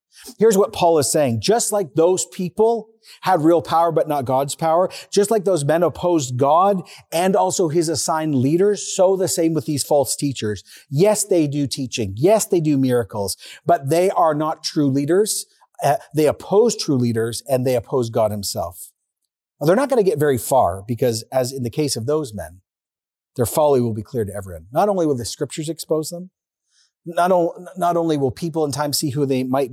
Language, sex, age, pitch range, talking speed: English, male, 40-59, 130-185 Hz, 200 wpm